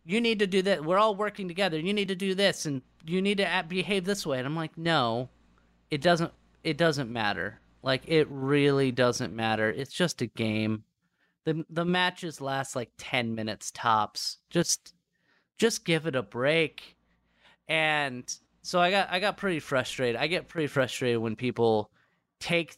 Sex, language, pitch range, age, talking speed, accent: male, English, 125-185 Hz, 30-49, 180 wpm, American